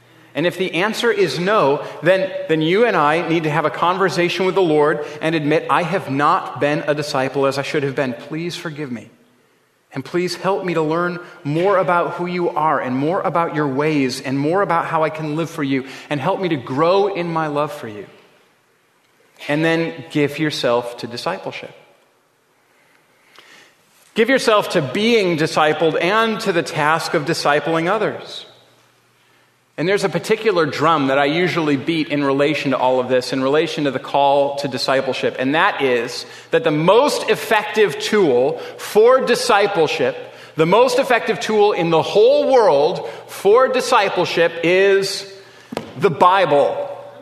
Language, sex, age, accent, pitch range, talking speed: English, male, 30-49, American, 145-195 Hz, 170 wpm